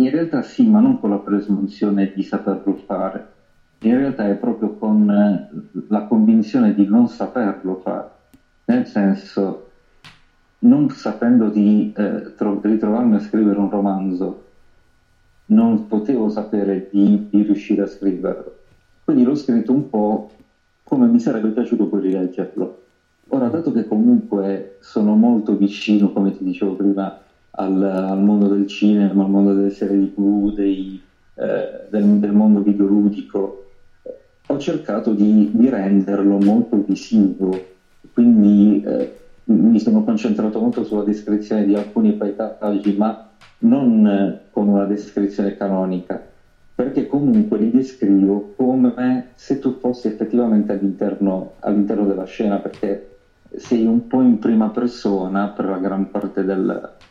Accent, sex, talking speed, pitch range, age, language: native, male, 135 wpm, 100-120 Hz, 50-69, Italian